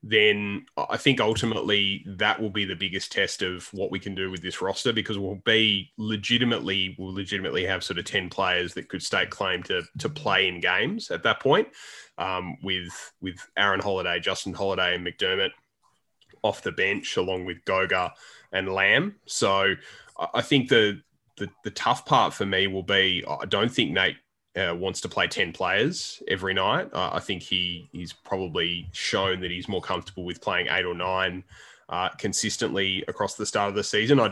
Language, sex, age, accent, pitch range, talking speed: English, male, 20-39, Australian, 90-100 Hz, 185 wpm